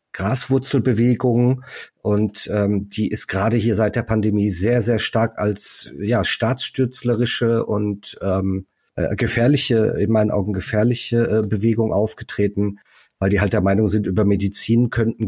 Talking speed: 140 wpm